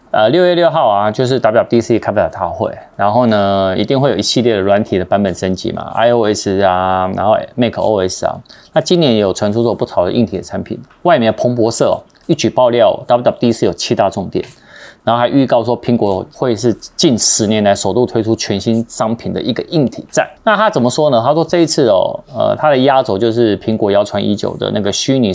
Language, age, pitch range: Chinese, 30-49, 100-130 Hz